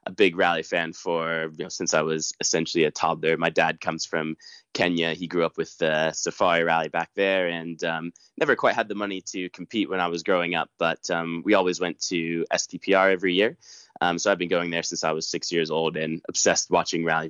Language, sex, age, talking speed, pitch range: English, male, 20-39, 230 wpm, 80-90 Hz